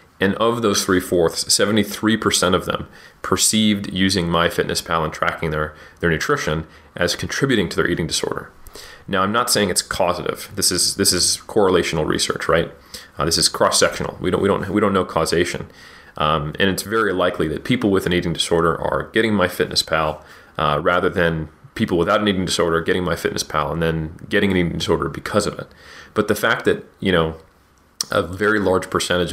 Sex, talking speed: male, 185 wpm